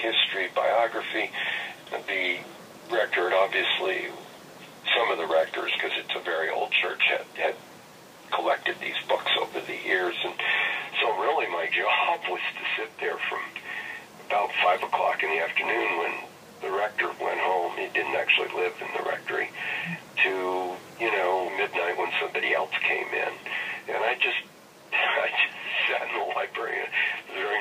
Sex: male